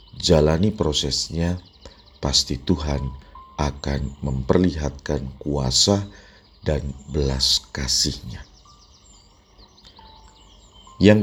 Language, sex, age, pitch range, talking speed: Indonesian, male, 50-69, 70-95 Hz, 60 wpm